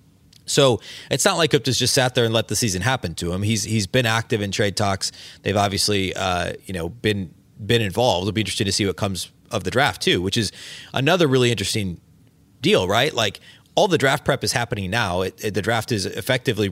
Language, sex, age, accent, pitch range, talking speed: English, male, 30-49, American, 95-120 Hz, 225 wpm